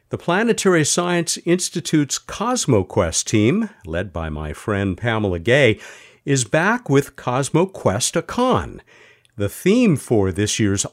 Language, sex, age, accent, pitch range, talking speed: English, male, 50-69, American, 95-145 Hz, 125 wpm